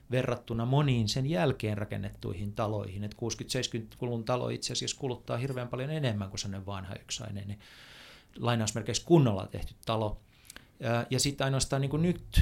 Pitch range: 105-125 Hz